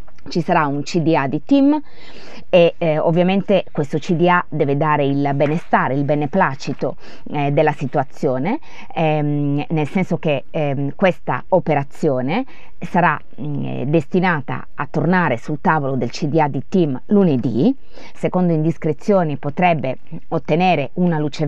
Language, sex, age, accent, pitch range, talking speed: Italian, female, 20-39, native, 145-185 Hz, 125 wpm